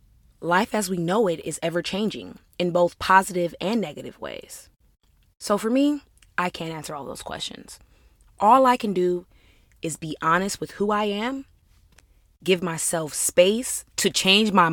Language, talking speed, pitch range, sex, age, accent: English, 160 wpm, 150-195 Hz, female, 20-39, American